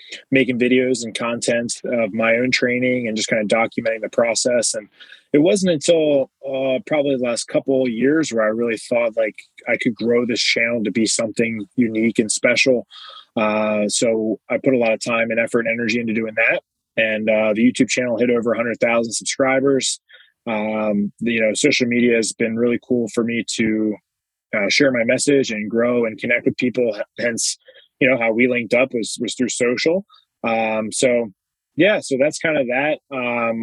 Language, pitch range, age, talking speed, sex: English, 110-125 Hz, 20-39, 200 wpm, male